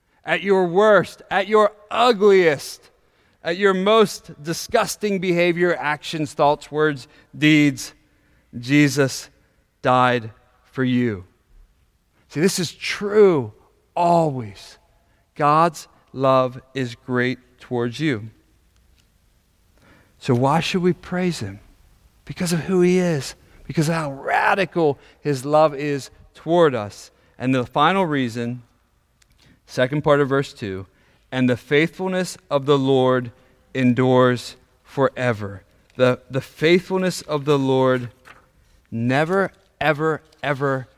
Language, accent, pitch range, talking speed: English, American, 125-170 Hz, 110 wpm